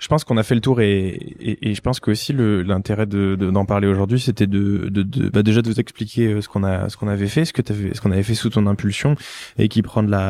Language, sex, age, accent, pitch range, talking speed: French, male, 20-39, French, 100-120 Hz, 290 wpm